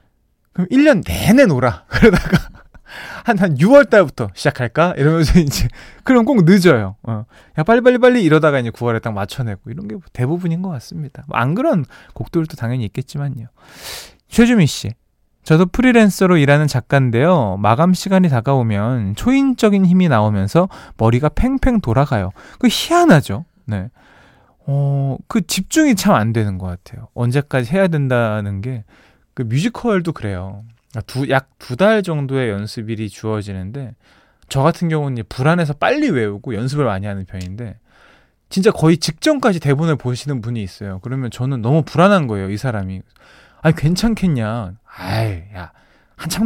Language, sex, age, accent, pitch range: Korean, male, 20-39, native, 110-180 Hz